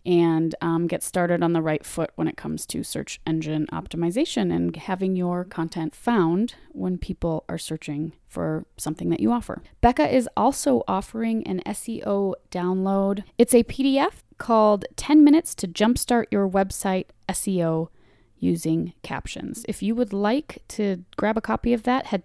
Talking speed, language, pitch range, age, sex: 160 wpm, English, 175-245 Hz, 30-49, female